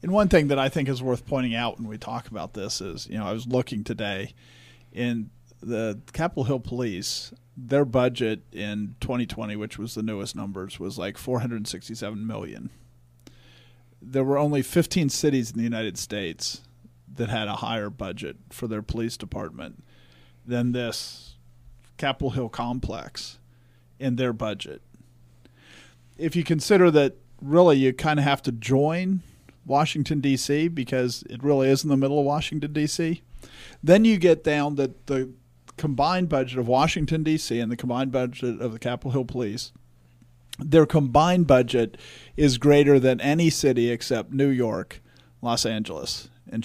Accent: American